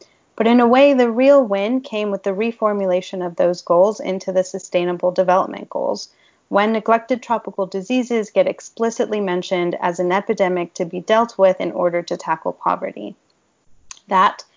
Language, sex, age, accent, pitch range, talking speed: English, female, 30-49, American, 180-215 Hz, 160 wpm